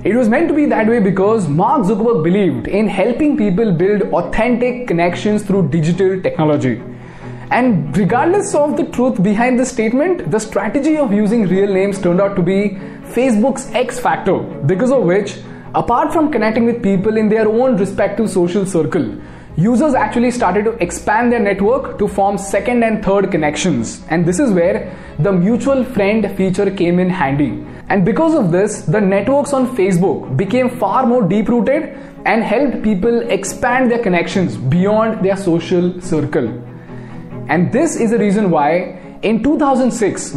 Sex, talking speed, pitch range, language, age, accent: male, 160 wpm, 185-245 Hz, Hindi, 20-39, native